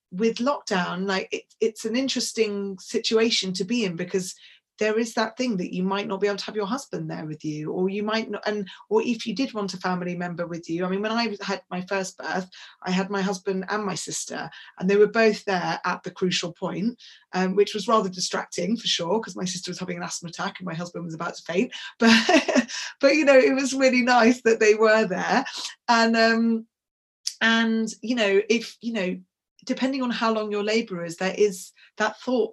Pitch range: 185-225 Hz